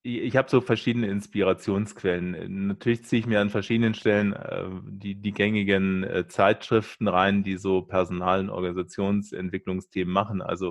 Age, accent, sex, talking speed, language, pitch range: 20-39, German, male, 135 wpm, German, 95-110 Hz